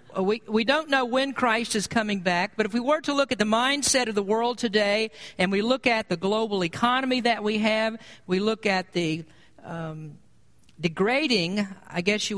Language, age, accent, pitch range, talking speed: English, 50-69, American, 180-230 Hz, 200 wpm